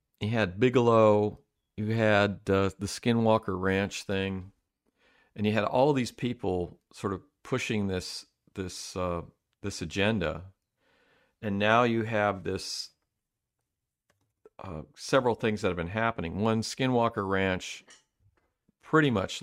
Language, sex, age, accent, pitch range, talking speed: English, male, 40-59, American, 95-110 Hz, 130 wpm